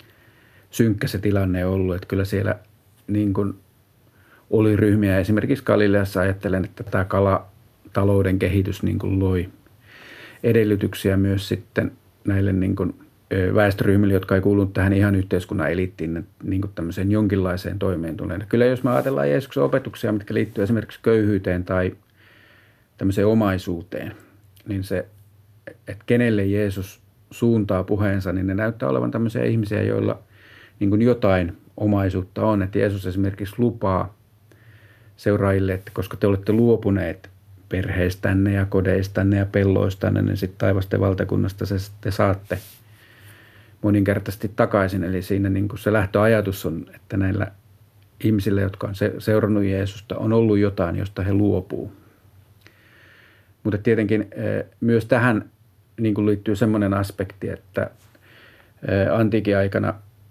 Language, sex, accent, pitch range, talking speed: Finnish, male, native, 95-110 Hz, 120 wpm